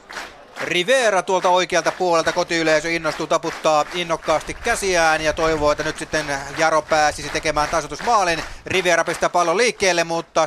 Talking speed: 130 wpm